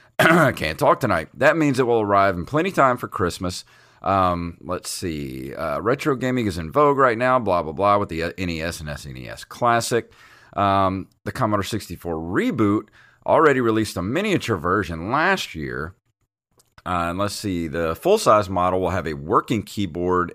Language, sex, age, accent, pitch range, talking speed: English, male, 30-49, American, 85-115 Hz, 175 wpm